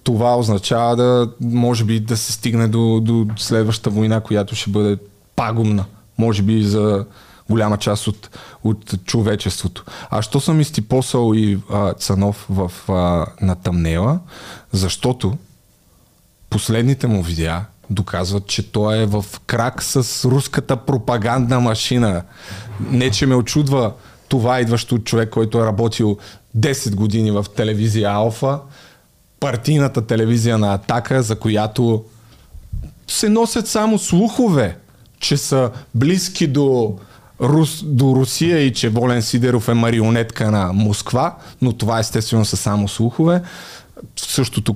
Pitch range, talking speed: 105-125 Hz, 130 wpm